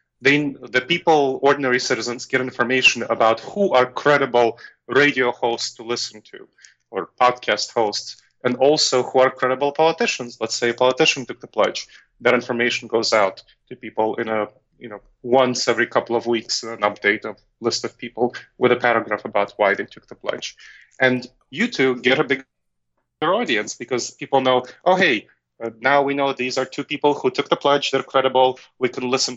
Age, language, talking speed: 30-49, English, 185 wpm